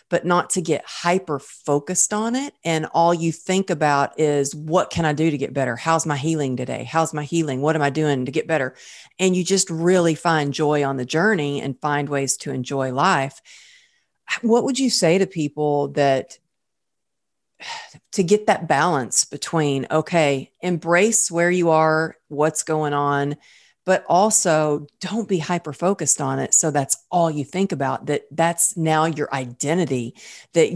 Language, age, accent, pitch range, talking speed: English, 40-59, American, 145-180 Hz, 175 wpm